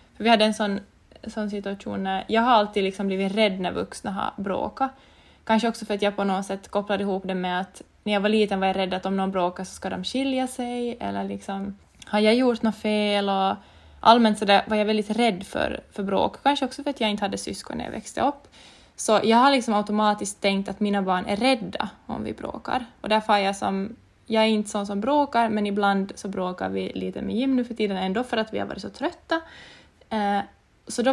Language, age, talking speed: Swedish, 20-39, 235 wpm